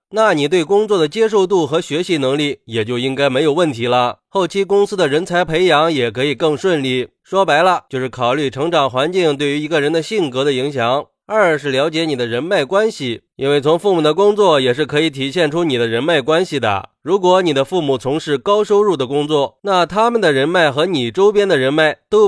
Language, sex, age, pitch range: Chinese, male, 20-39, 135-190 Hz